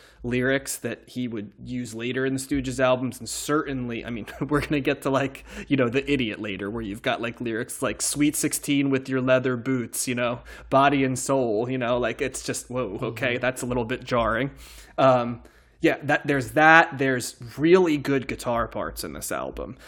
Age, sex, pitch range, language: 20-39, male, 120-145 Hz, English